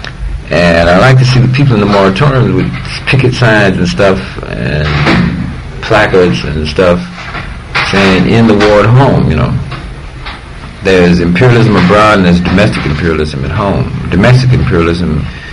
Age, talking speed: 50-69, 145 wpm